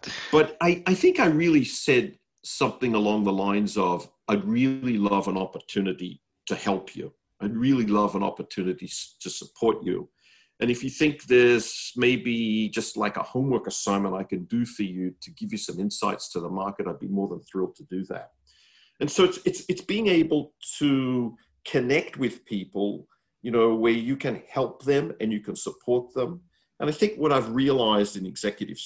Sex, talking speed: male, 190 wpm